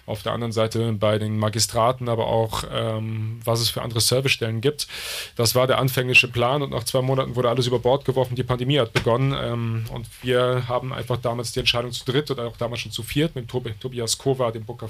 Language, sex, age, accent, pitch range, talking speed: German, male, 30-49, German, 115-130 Hz, 225 wpm